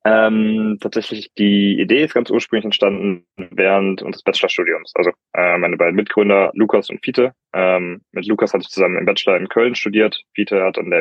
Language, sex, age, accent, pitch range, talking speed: German, male, 20-39, German, 95-105 Hz, 185 wpm